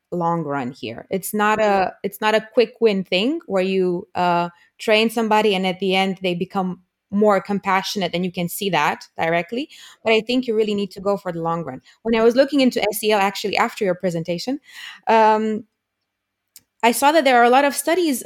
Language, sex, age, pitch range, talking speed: English, female, 20-39, 185-225 Hz, 205 wpm